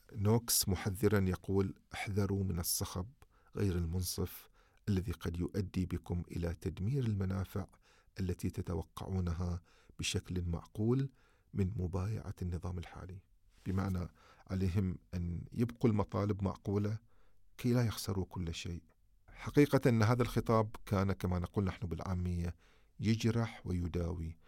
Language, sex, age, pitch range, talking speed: Arabic, male, 40-59, 90-105 Hz, 110 wpm